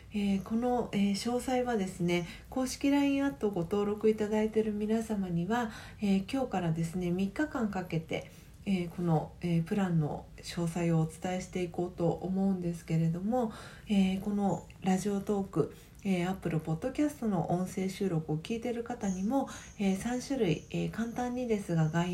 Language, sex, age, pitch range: Japanese, female, 40-59, 175-230 Hz